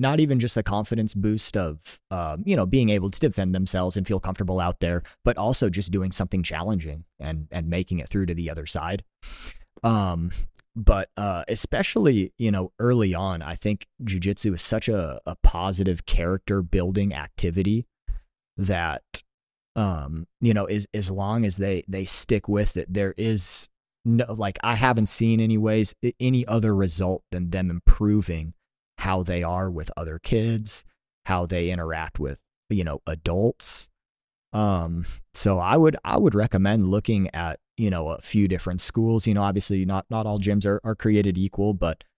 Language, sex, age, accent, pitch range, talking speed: English, male, 30-49, American, 90-105 Hz, 175 wpm